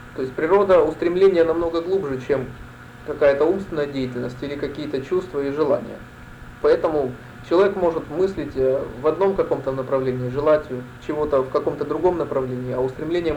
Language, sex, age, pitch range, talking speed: Russian, male, 30-49, 130-165 Hz, 140 wpm